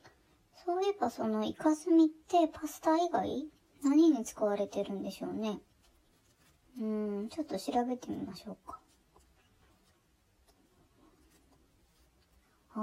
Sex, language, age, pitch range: male, Japanese, 20-39, 215-325 Hz